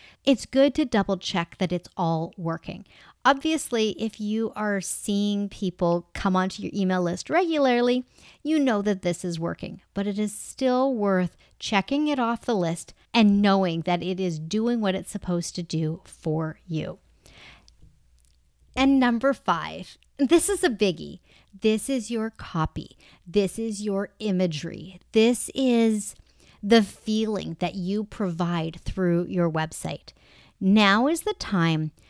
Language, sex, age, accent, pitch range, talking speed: English, female, 40-59, American, 175-235 Hz, 150 wpm